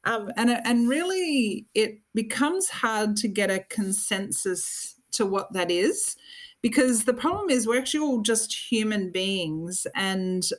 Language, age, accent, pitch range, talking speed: English, 40-59, Australian, 190-240 Hz, 145 wpm